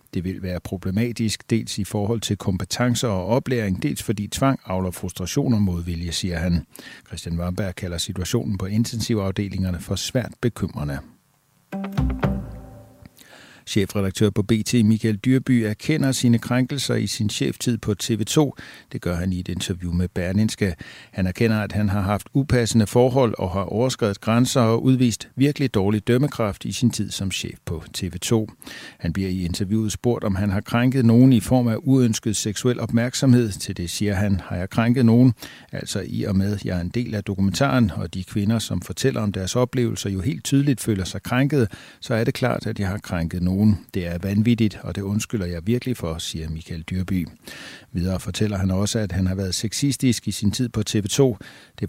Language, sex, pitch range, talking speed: Danish, male, 95-120 Hz, 185 wpm